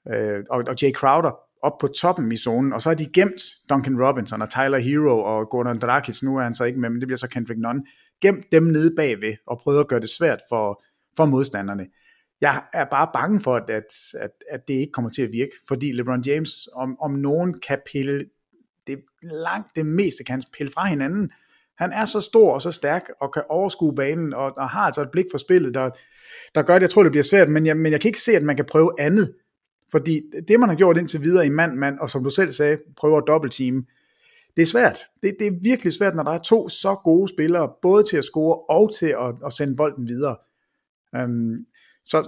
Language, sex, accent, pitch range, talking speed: English, male, Danish, 135-185 Hz, 235 wpm